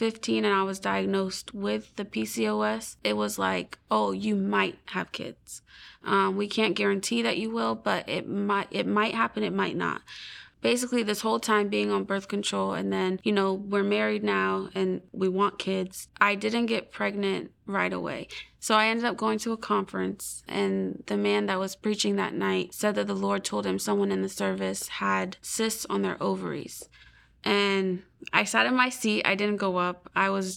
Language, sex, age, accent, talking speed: English, female, 20-39, American, 195 wpm